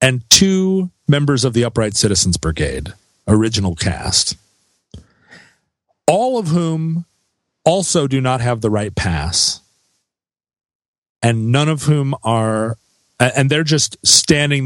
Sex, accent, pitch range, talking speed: male, American, 105-150 Hz, 120 wpm